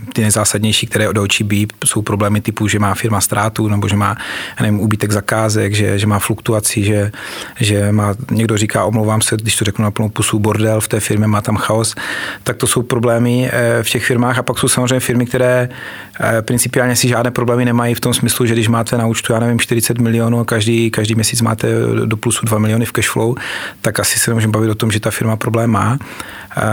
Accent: native